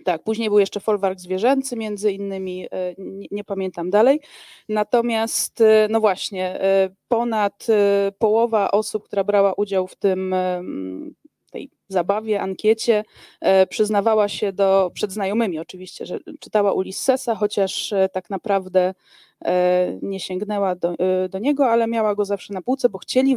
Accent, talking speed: native, 130 wpm